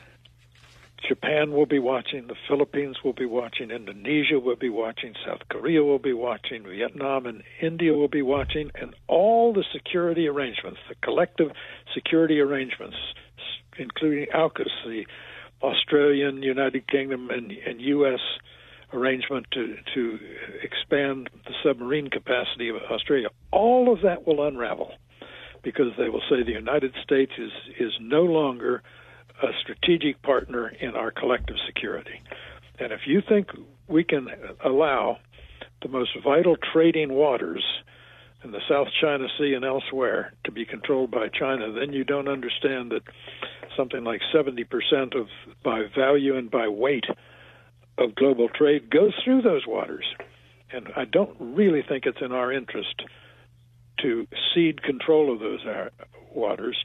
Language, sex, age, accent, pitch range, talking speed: English, male, 60-79, American, 125-150 Hz, 140 wpm